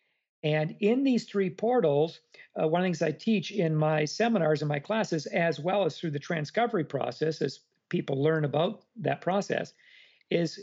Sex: male